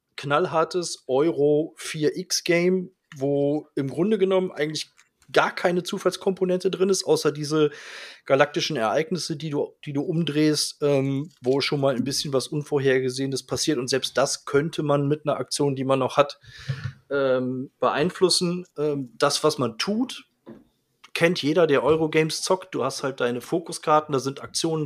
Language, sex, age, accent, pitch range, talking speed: German, male, 30-49, German, 135-170 Hz, 145 wpm